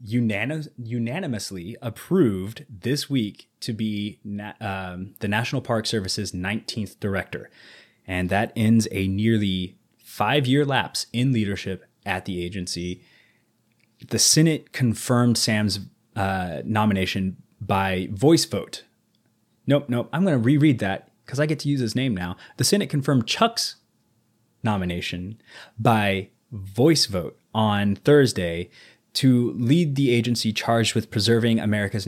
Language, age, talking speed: English, 20-39, 125 wpm